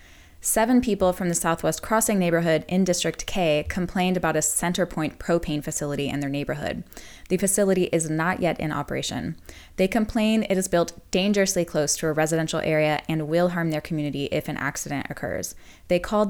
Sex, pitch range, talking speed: female, 155-190 Hz, 180 wpm